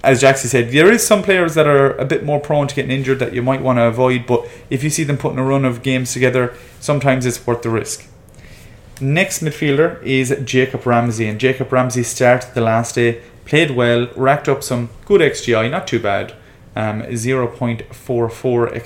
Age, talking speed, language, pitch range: 30-49, 195 wpm, English, 115-135 Hz